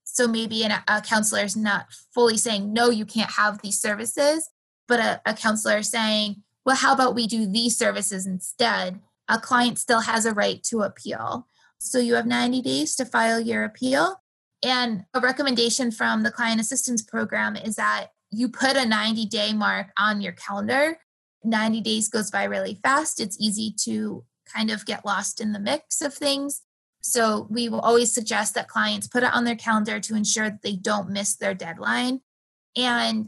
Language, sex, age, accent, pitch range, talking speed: English, female, 20-39, American, 210-240 Hz, 185 wpm